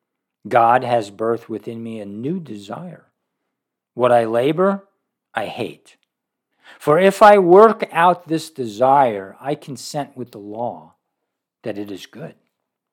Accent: American